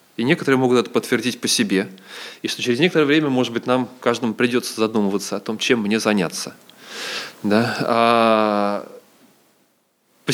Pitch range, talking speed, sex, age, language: 115-140 Hz, 150 wpm, male, 20-39, Russian